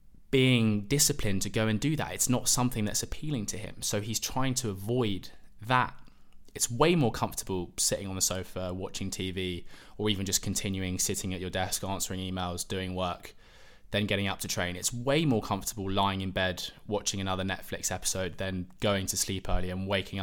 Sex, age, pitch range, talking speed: male, 20-39, 95-115 Hz, 195 wpm